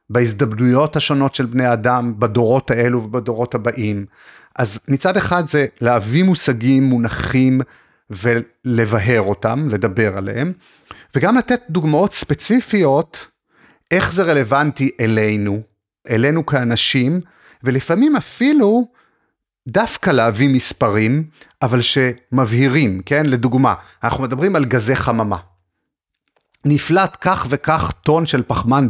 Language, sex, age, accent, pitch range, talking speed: Hebrew, male, 30-49, native, 115-155 Hz, 105 wpm